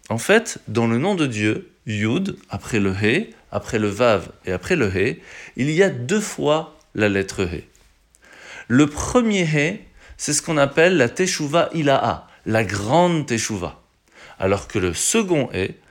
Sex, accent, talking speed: male, French, 165 wpm